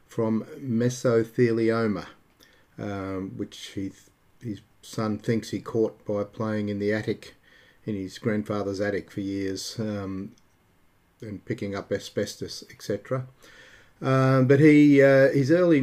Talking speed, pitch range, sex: 130 wpm, 105-130 Hz, male